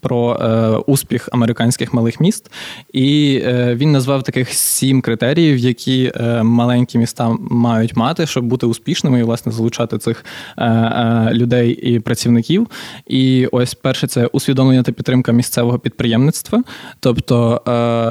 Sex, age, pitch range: male, 20-39, 120-135 Hz